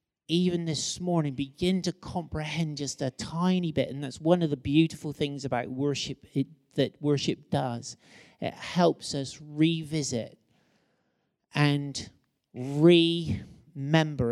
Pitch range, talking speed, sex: 140-180 Hz, 115 wpm, male